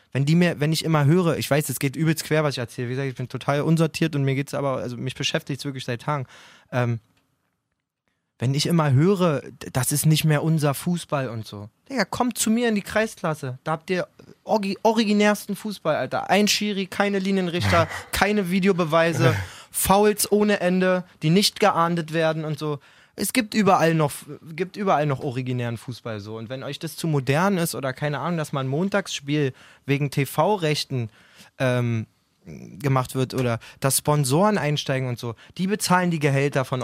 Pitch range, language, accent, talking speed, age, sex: 130-175 Hz, German, German, 185 wpm, 20-39, male